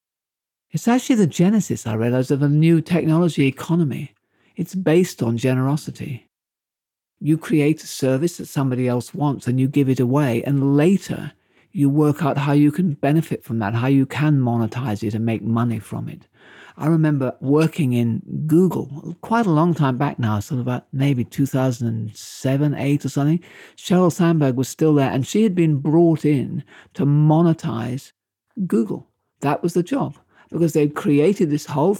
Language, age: English, 50-69